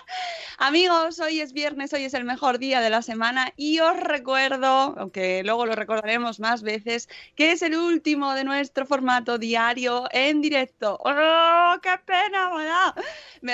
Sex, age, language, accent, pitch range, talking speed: female, 20-39, Spanish, Spanish, 230-300 Hz, 155 wpm